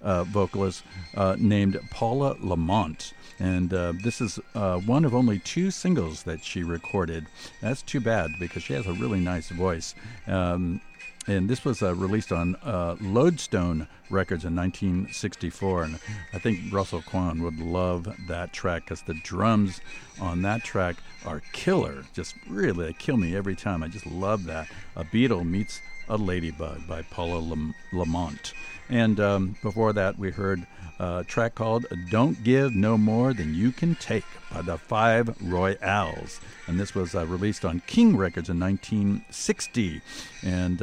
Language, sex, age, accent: English, male, 50-69, American